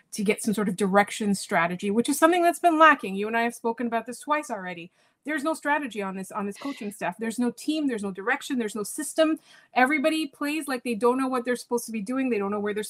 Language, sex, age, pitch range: English, female, 30-49, 205-250 Hz